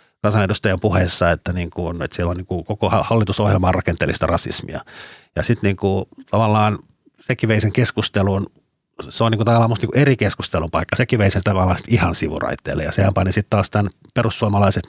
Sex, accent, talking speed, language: male, native, 155 wpm, Finnish